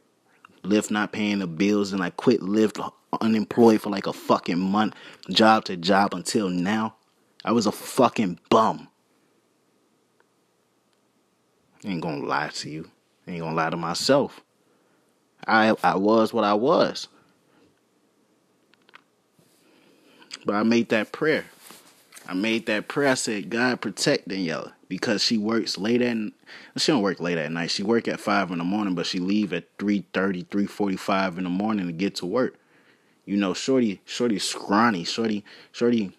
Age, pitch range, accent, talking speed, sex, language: 30-49, 95-115 Hz, American, 160 wpm, male, English